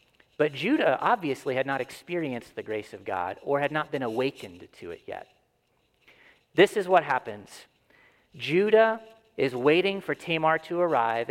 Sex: male